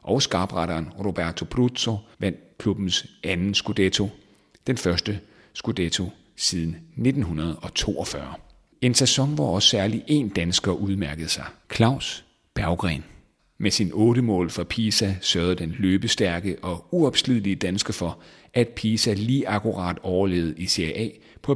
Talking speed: 120 wpm